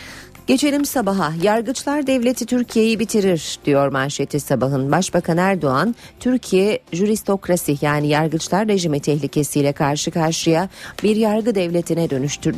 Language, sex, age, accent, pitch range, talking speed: Turkish, female, 40-59, native, 140-205 Hz, 110 wpm